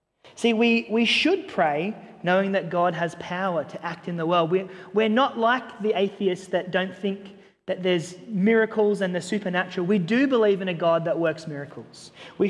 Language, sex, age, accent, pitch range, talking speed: English, male, 30-49, Australian, 170-205 Hz, 190 wpm